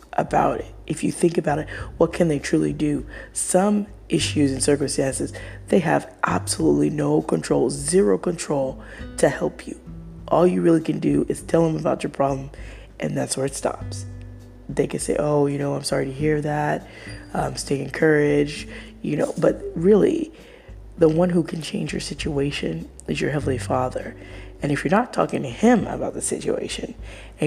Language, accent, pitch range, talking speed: English, American, 105-155 Hz, 180 wpm